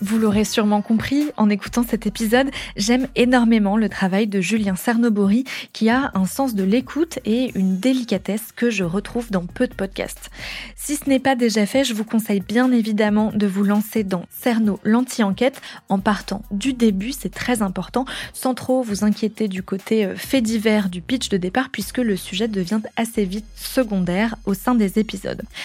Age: 20-39